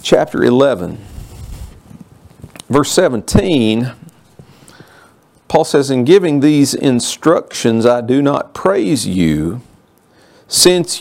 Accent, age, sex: American, 40-59, male